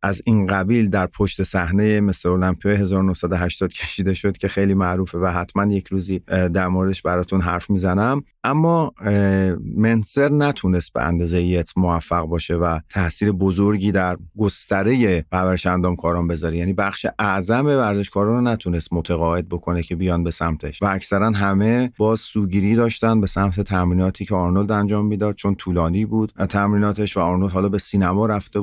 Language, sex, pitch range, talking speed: Persian, male, 95-110 Hz, 155 wpm